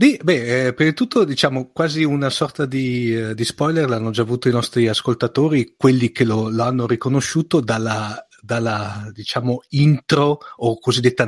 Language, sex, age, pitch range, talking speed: Italian, male, 40-59, 115-145 Hz, 160 wpm